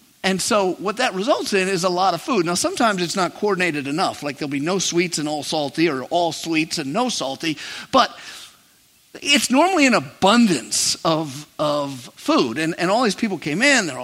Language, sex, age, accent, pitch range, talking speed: English, male, 50-69, American, 160-215 Hz, 200 wpm